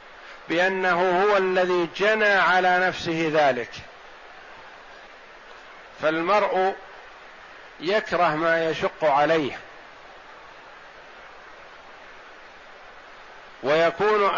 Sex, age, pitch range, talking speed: male, 50-69, 165-190 Hz, 55 wpm